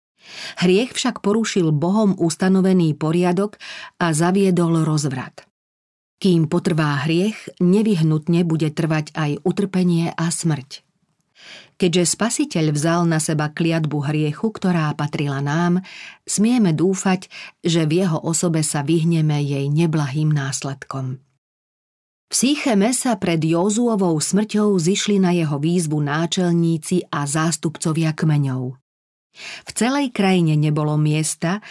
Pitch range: 155-190 Hz